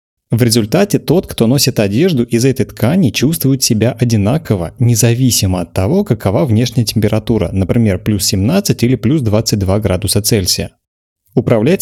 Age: 30-49